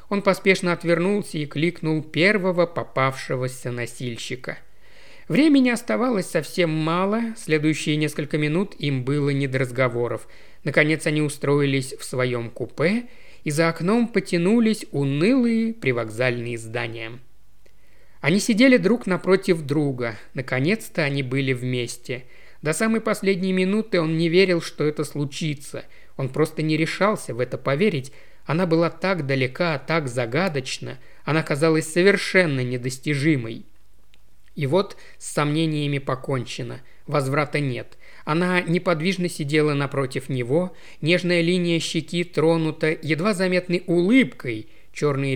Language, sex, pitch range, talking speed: Russian, male, 135-180 Hz, 115 wpm